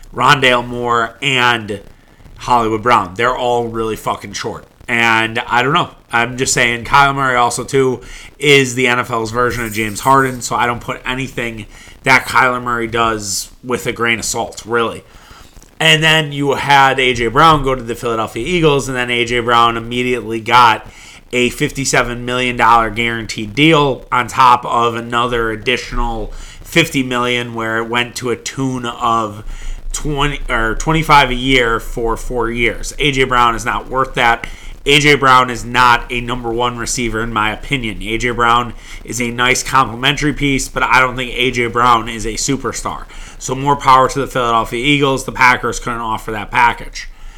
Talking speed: 170 wpm